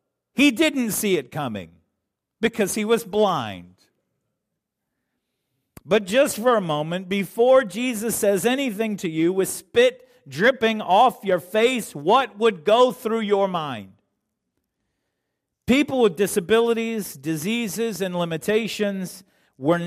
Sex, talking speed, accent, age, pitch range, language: male, 120 wpm, American, 50-69, 165-225 Hz, English